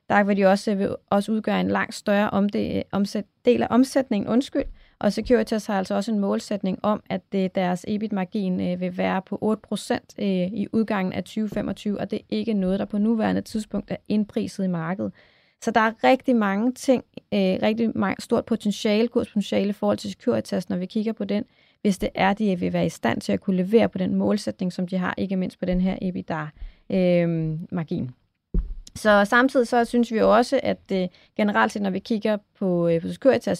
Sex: female